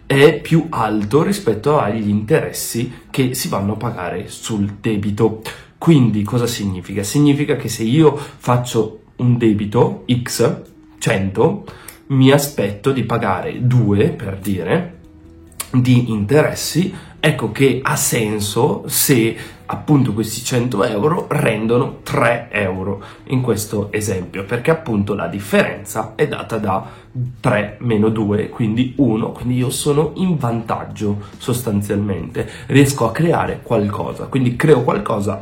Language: Italian